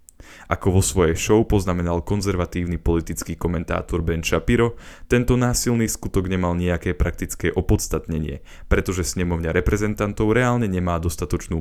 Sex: male